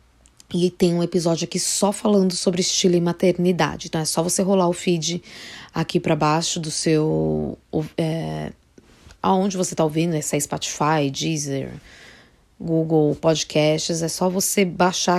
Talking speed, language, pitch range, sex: 140 wpm, Portuguese, 155-190 Hz, female